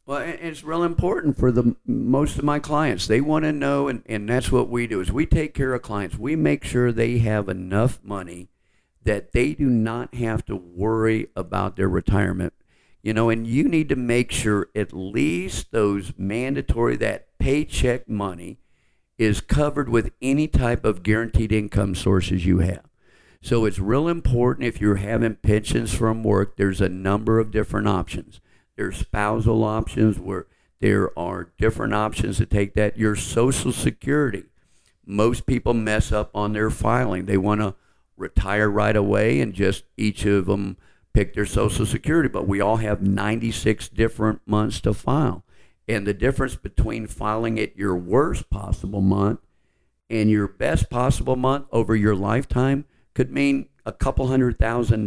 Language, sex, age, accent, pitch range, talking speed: English, male, 50-69, American, 100-120 Hz, 165 wpm